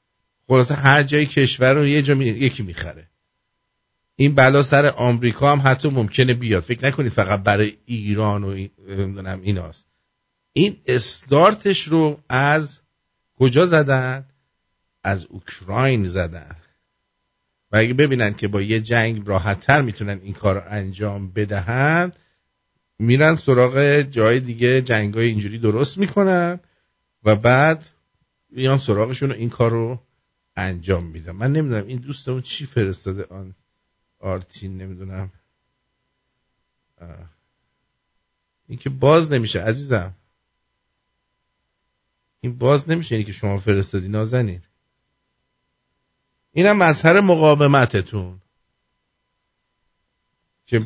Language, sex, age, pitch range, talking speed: English, male, 50-69, 100-135 Hz, 110 wpm